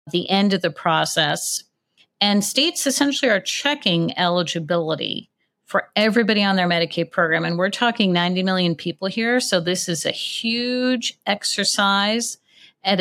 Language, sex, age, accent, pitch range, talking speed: English, female, 50-69, American, 170-215 Hz, 145 wpm